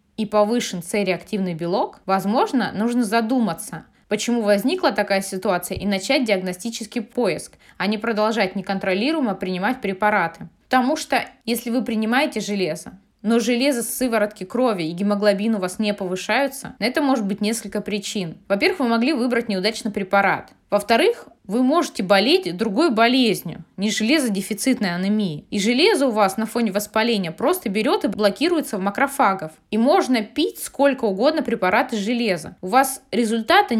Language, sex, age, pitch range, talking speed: Russian, female, 20-39, 205-255 Hz, 145 wpm